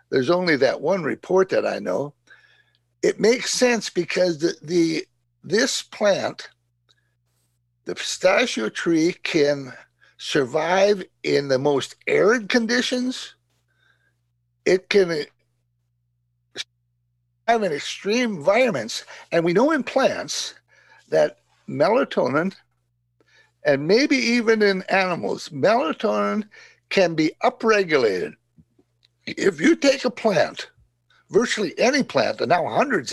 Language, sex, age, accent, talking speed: English, male, 60-79, American, 105 wpm